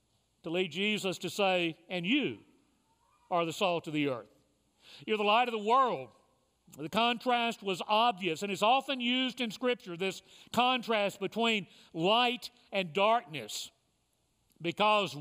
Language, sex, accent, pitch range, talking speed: English, male, American, 175-225 Hz, 140 wpm